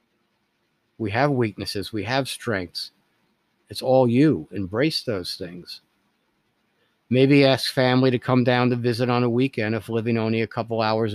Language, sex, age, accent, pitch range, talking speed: English, male, 50-69, American, 105-125 Hz, 155 wpm